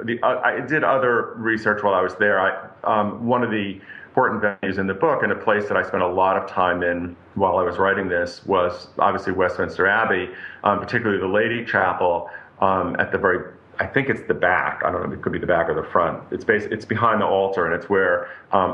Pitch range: 90-115 Hz